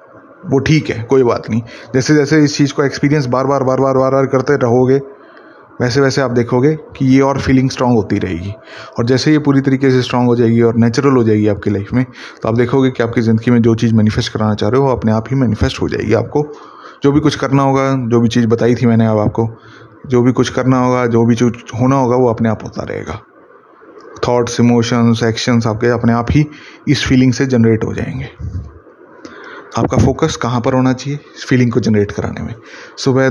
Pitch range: 115-135 Hz